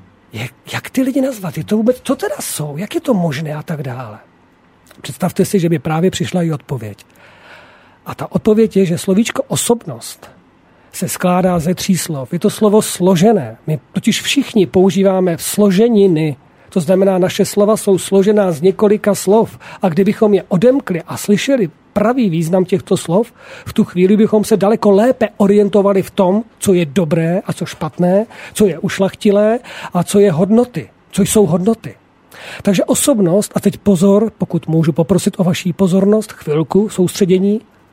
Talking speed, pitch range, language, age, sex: 165 wpm, 165-210 Hz, Slovak, 40-59, male